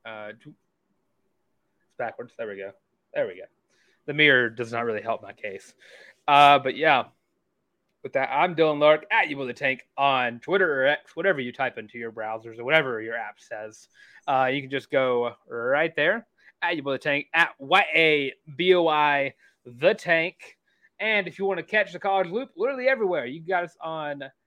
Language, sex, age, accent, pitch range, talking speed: English, male, 20-39, American, 120-170 Hz, 185 wpm